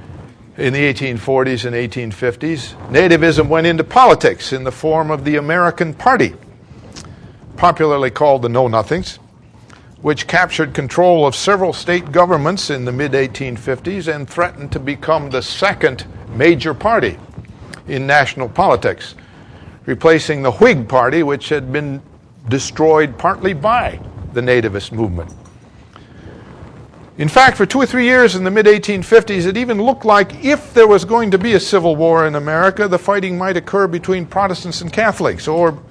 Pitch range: 125-175 Hz